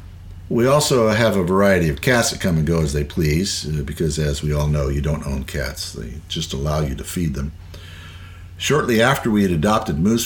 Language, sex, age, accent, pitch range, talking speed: English, male, 60-79, American, 75-95 Hz, 210 wpm